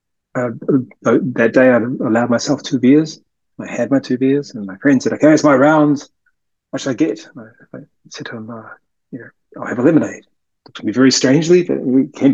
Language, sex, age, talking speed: English, male, 30-49, 220 wpm